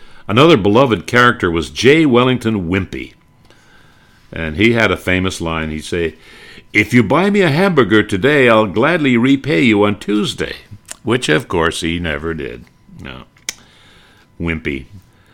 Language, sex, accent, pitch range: English, male, American, 85-115 Hz